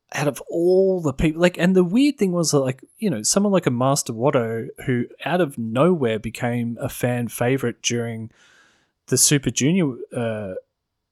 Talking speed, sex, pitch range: 175 wpm, male, 115-155 Hz